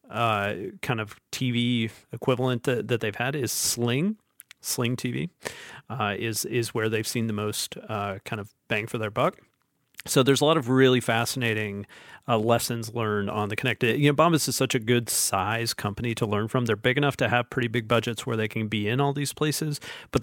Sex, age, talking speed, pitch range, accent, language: male, 40-59, 210 wpm, 110-145 Hz, American, English